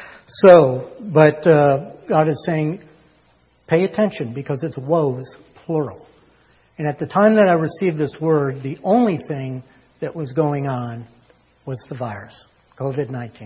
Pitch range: 130-165 Hz